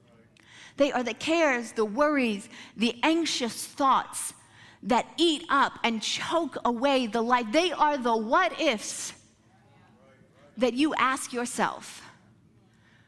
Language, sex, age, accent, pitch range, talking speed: English, female, 30-49, American, 215-300 Hz, 120 wpm